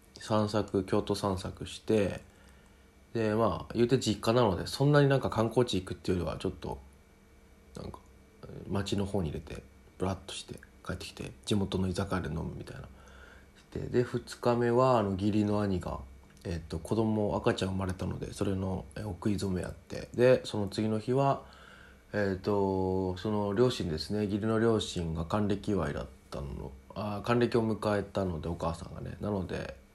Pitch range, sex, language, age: 90-115 Hz, male, Japanese, 20-39